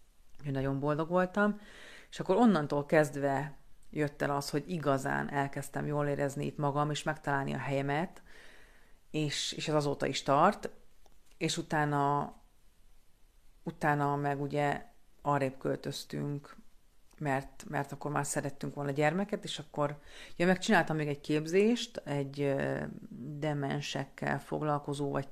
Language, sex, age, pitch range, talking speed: Hungarian, female, 40-59, 140-160 Hz, 125 wpm